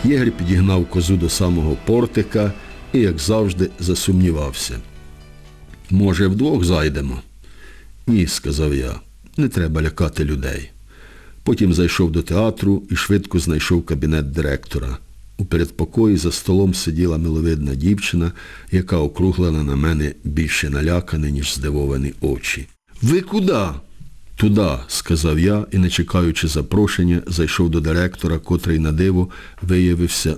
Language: English